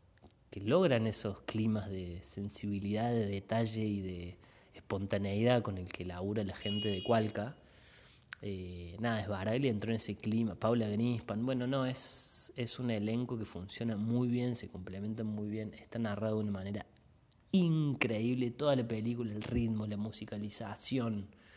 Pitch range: 105-125 Hz